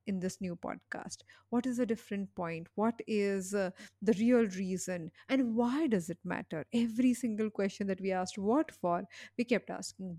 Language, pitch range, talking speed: English, 195-250 Hz, 185 wpm